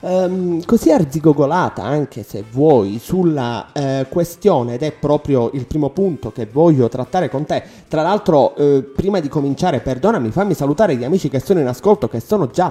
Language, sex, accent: Italian, male, native